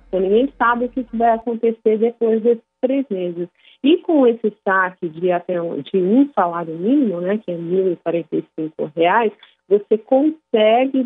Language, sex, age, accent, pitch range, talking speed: Portuguese, female, 40-59, Brazilian, 185-230 Hz, 150 wpm